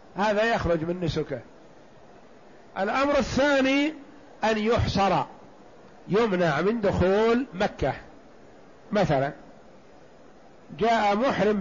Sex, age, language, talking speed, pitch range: male, 50-69, Arabic, 80 wpm, 190-240 Hz